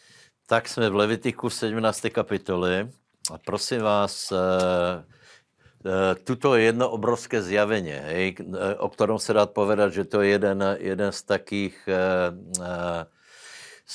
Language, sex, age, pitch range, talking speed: Slovak, male, 60-79, 90-105 Hz, 125 wpm